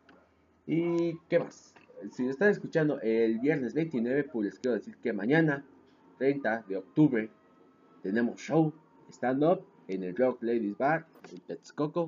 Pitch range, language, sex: 100-150 Hz, Spanish, male